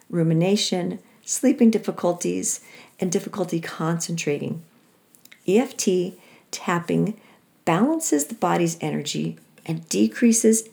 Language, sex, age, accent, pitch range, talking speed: English, female, 50-69, American, 160-215 Hz, 80 wpm